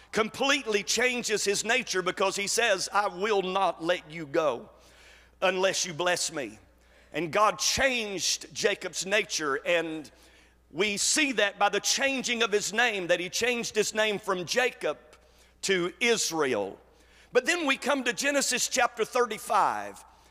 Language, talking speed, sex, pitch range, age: English, 145 wpm, male, 195-250 Hz, 50-69